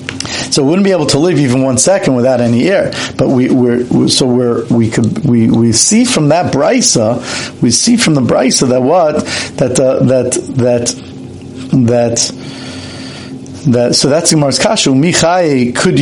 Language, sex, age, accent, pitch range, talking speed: English, male, 50-69, American, 125-170 Hz, 170 wpm